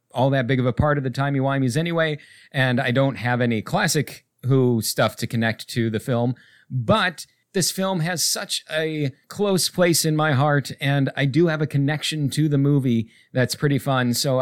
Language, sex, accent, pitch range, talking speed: English, male, American, 125-155 Hz, 195 wpm